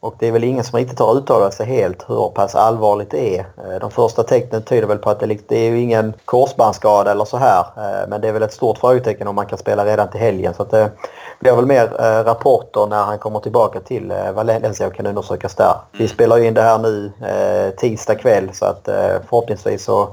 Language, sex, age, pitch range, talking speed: Swedish, male, 30-49, 105-120 Hz, 220 wpm